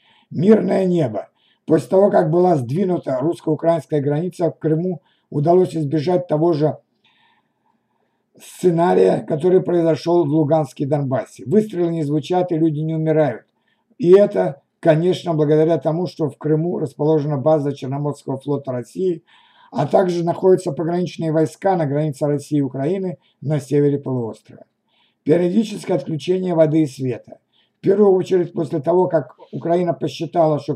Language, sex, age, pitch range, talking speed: Ukrainian, male, 60-79, 150-180 Hz, 135 wpm